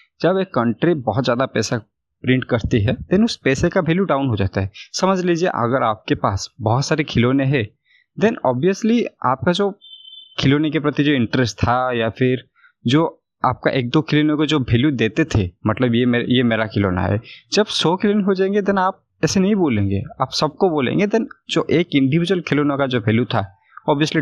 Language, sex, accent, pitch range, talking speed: Hindi, male, native, 115-160 Hz, 195 wpm